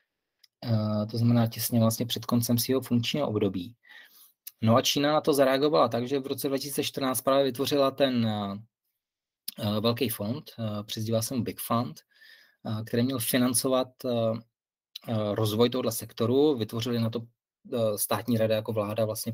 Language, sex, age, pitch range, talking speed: Czech, male, 20-39, 110-130 Hz, 135 wpm